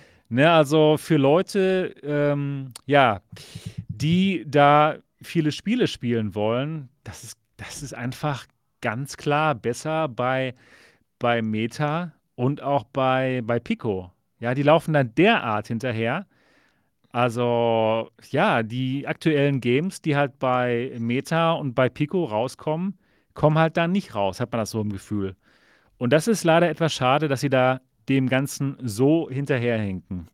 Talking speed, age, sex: 135 wpm, 40-59, male